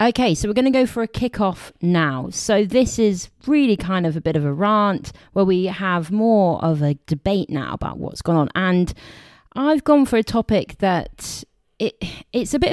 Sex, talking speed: female, 205 wpm